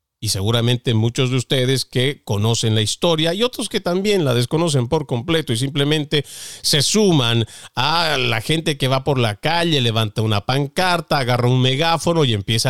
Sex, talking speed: male, 175 wpm